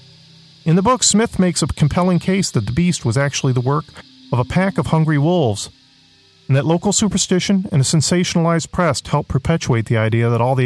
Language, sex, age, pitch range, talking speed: English, male, 40-59, 115-165 Hz, 205 wpm